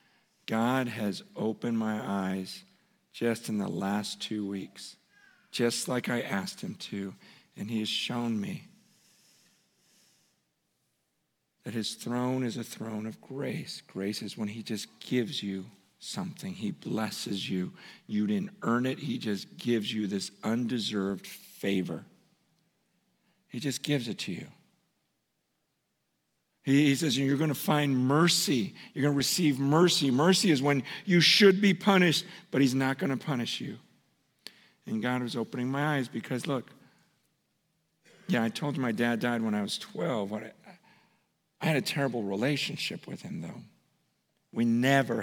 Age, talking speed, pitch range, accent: 50-69, 150 wpm, 115-165 Hz, American